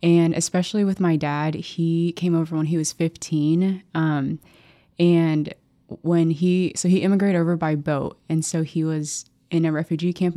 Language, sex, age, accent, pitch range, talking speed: English, female, 20-39, American, 160-180 Hz, 175 wpm